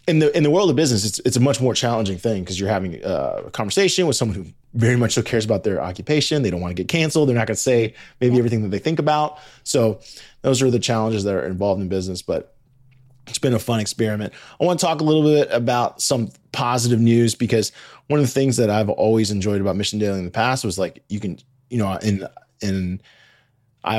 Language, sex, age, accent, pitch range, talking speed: English, male, 20-39, American, 105-130 Hz, 245 wpm